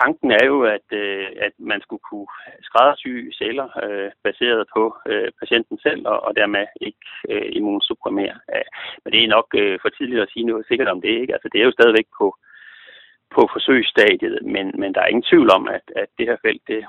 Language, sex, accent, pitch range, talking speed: Danish, male, native, 330-435 Hz, 210 wpm